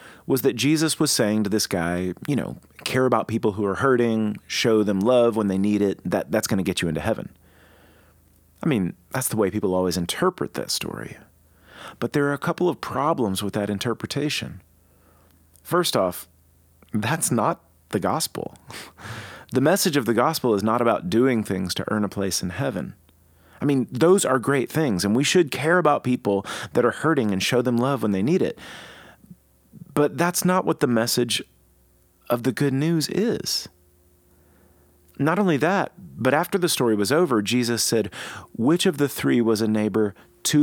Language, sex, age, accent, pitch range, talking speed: English, male, 30-49, American, 90-140 Hz, 185 wpm